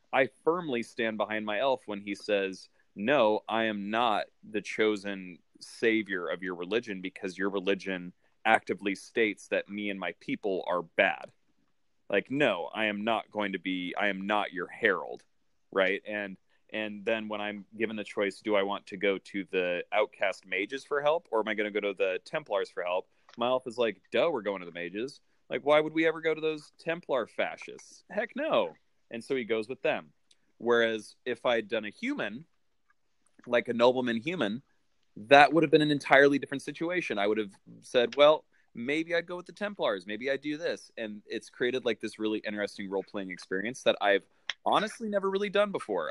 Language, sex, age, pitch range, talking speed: English, male, 30-49, 100-135 Hz, 200 wpm